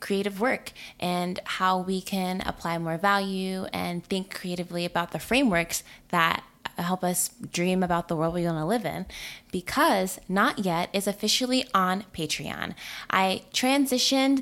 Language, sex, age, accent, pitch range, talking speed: English, female, 10-29, American, 180-220 Hz, 150 wpm